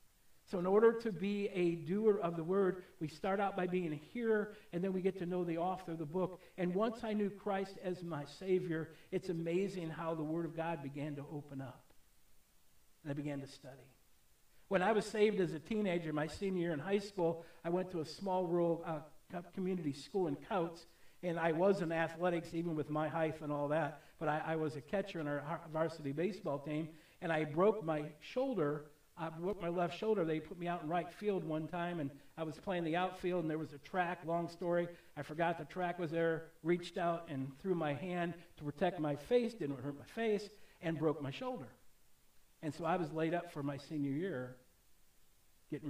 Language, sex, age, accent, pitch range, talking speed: English, male, 60-79, American, 150-185 Hz, 215 wpm